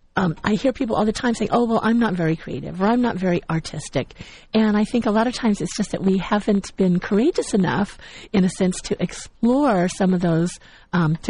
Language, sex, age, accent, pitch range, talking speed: English, female, 50-69, American, 175-220 Hz, 230 wpm